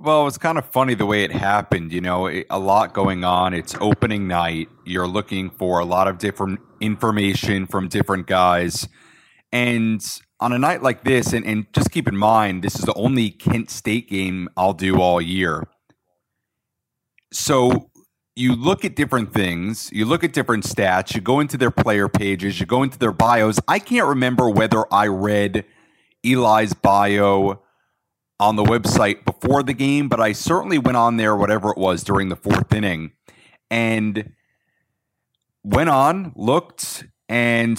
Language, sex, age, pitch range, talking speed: English, male, 40-59, 95-120 Hz, 170 wpm